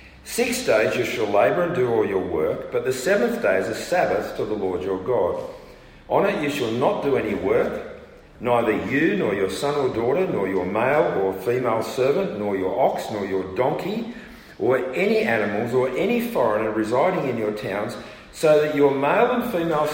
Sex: male